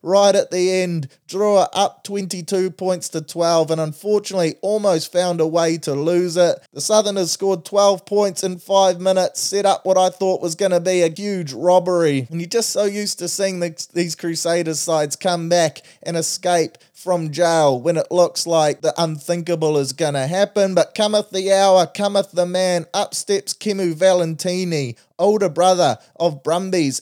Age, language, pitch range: 20-39, English, 165-195 Hz